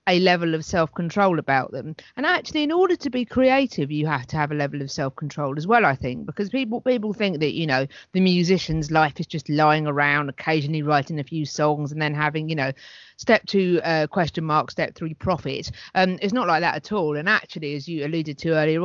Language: English